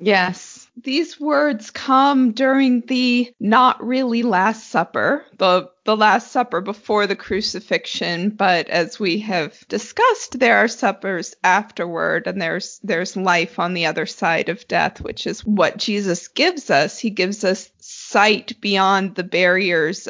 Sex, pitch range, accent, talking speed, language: female, 190-240 Hz, American, 145 wpm, English